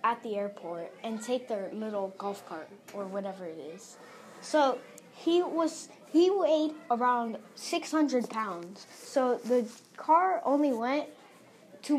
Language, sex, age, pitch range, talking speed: English, female, 10-29, 205-285 Hz, 135 wpm